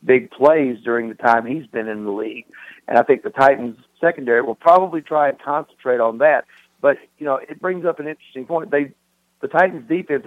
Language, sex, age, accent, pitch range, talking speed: English, male, 60-79, American, 120-140 Hz, 210 wpm